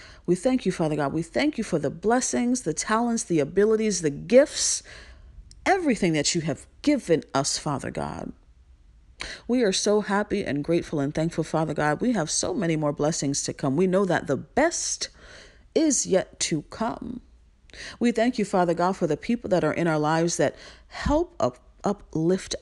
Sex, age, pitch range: female, 40-59, 150-225 Hz